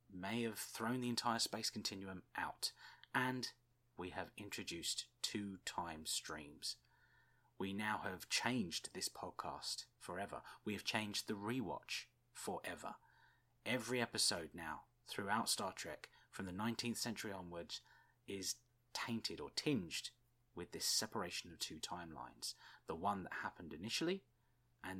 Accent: British